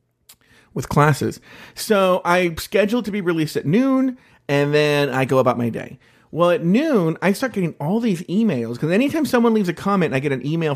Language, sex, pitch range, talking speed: English, male, 135-190 Hz, 205 wpm